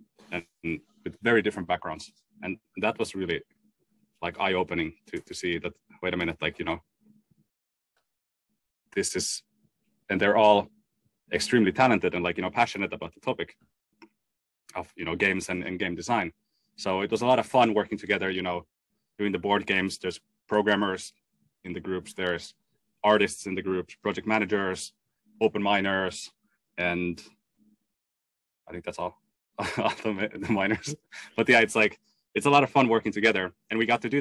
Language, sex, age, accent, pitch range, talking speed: English, male, 30-49, Finnish, 95-115 Hz, 170 wpm